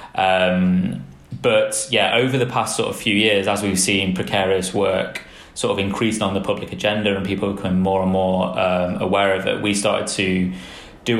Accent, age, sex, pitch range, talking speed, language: British, 20-39, male, 95-105 Hz, 195 wpm, English